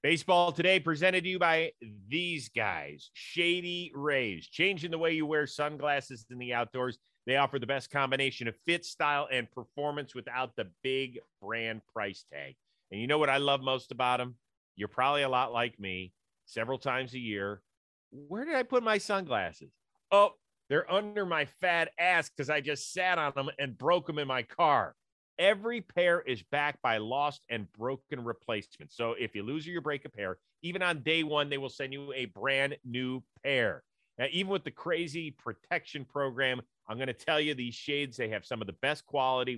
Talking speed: 195 wpm